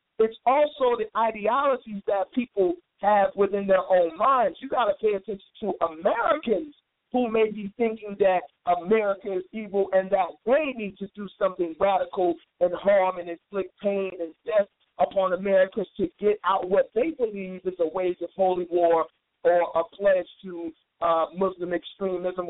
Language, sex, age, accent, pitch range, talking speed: English, male, 50-69, American, 185-235 Hz, 165 wpm